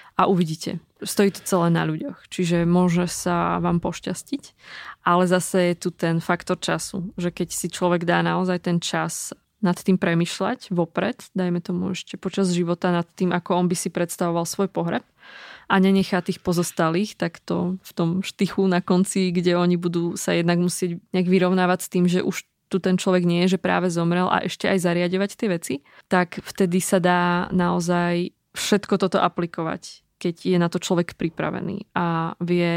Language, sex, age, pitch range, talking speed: Slovak, female, 20-39, 170-185 Hz, 180 wpm